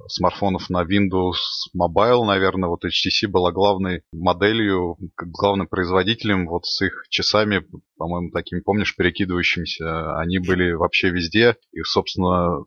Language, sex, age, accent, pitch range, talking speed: Russian, male, 20-39, native, 90-100 Hz, 125 wpm